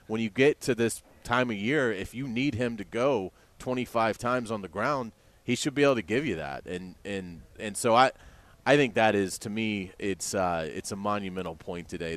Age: 30-49